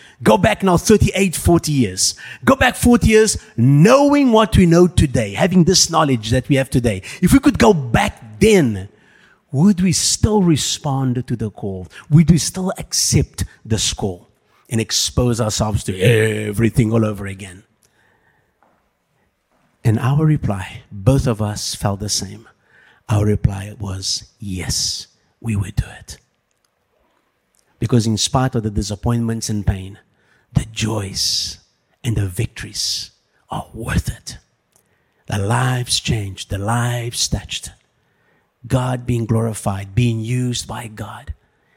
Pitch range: 105-140 Hz